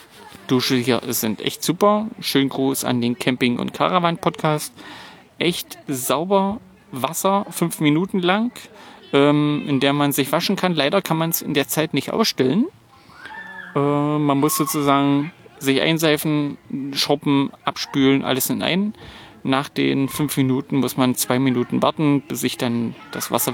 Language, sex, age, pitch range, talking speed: German, male, 30-49, 130-160 Hz, 150 wpm